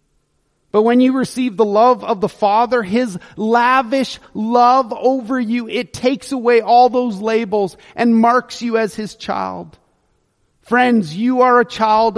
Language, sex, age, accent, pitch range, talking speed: English, male, 30-49, American, 160-225 Hz, 155 wpm